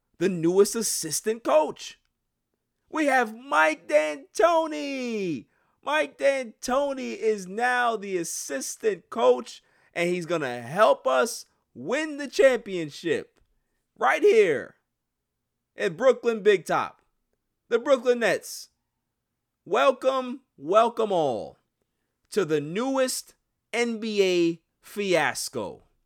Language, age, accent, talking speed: English, 30-49, American, 95 wpm